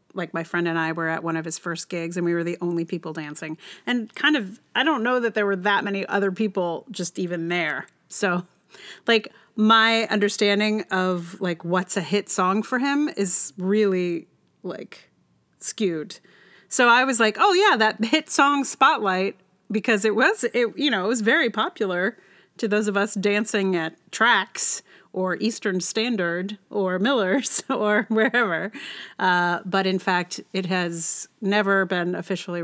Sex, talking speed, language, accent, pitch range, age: female, 175 wpm, English, American, 175-225 Hz, 30-49